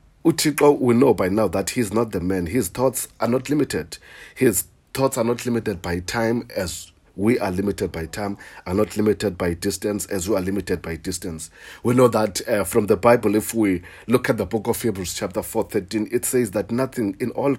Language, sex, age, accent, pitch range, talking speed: English, male, 50-69, South African, 95-130 Hz, 210 wpm